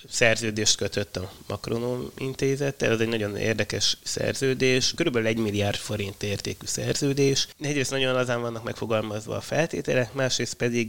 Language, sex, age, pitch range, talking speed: Hungarian, male, 20-39, 105-120 Hz, 145 wpm